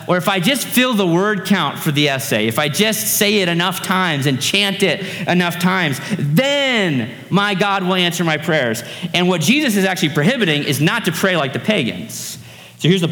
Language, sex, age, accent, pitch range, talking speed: English, male, 30-49, American, 150-205 Hz, 210 wpm